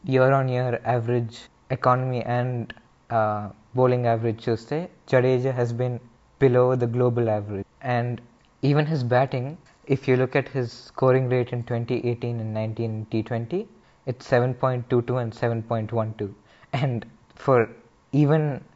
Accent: native